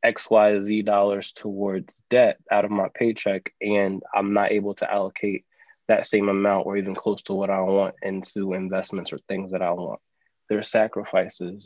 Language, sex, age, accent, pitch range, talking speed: English, male, 20-39, American, 95-105 Hz, 170 wpm